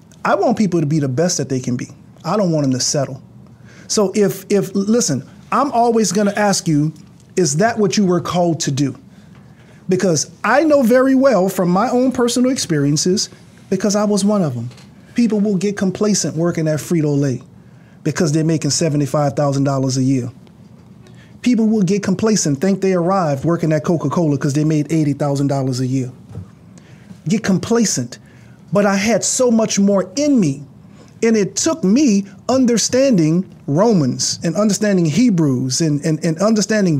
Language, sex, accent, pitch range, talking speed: English, male, American, 155-215 Hz, 165 wpm